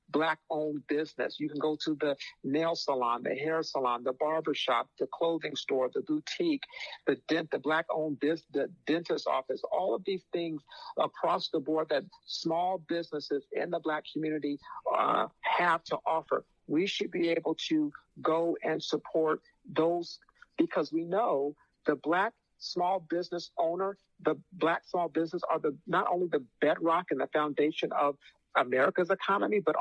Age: 50-69